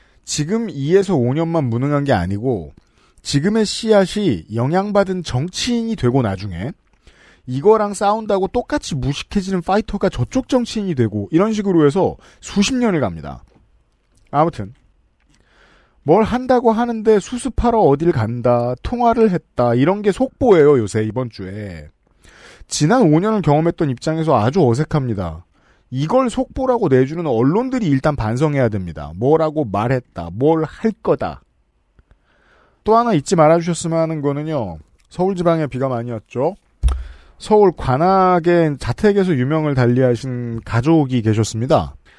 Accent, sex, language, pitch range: native, male, Korean, 120-195 Hz